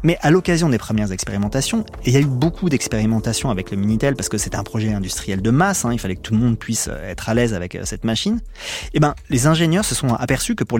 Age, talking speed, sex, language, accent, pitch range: 30-49, 260 wpm, male, French, French, 110-160 Hz